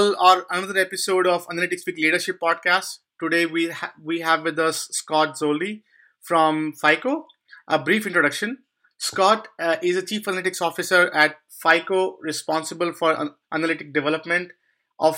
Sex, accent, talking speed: male, Indian, 145 wpm